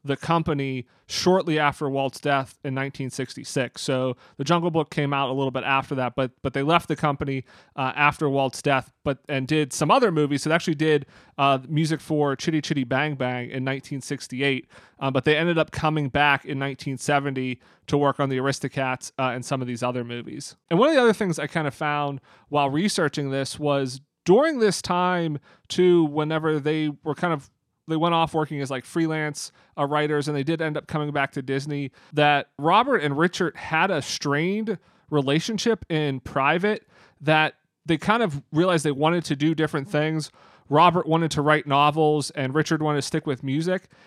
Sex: male